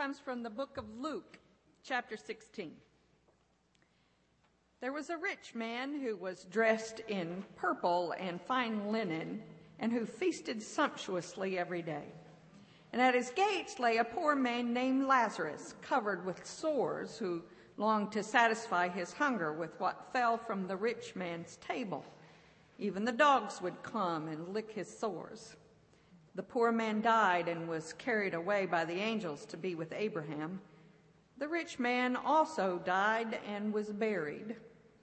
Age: 50-69